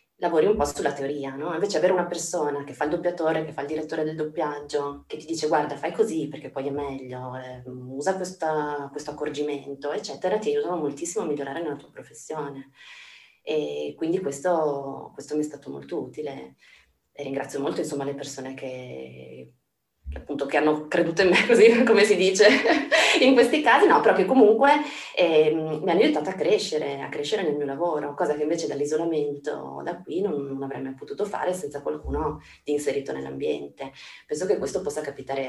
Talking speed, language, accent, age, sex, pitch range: 185 wpm, Italian, native, 20-39, female, 140-170 Hz